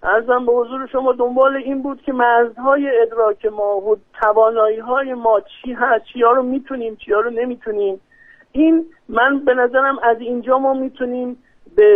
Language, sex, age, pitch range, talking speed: Persian, male, 50-69, 205-265 Hz, 160 wpm